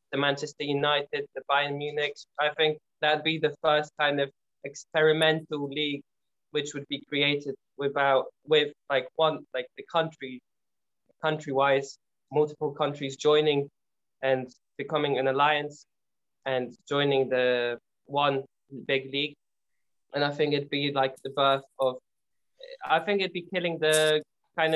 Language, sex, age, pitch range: English, male, 20-39, 135-155 Hz